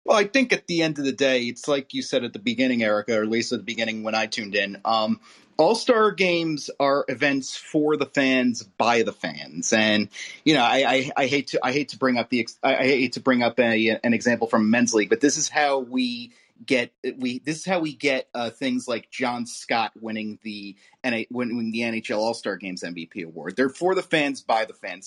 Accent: American